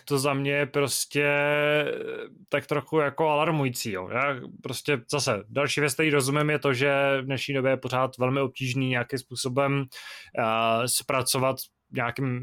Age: 20-39